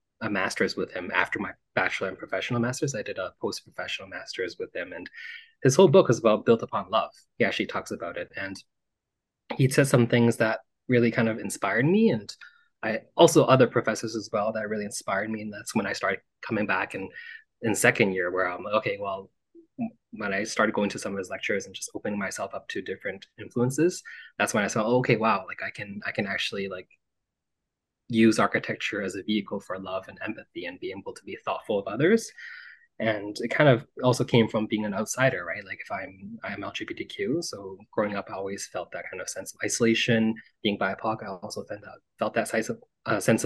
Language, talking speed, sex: English, 215 wpm, male